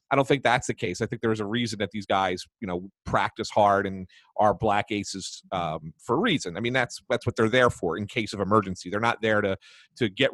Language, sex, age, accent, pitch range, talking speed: English, male, 30-49, American, 105-140 Hz, 255 wpm